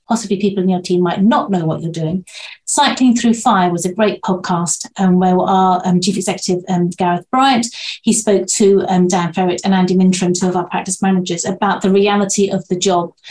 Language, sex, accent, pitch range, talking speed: English, female, British, 190-230 Hz, 210 wpm